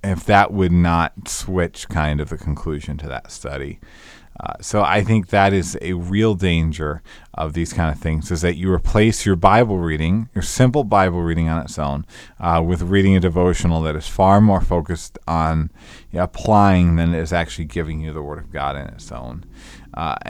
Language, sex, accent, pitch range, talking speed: English, male, American, 80-105 Hz, 195 wpm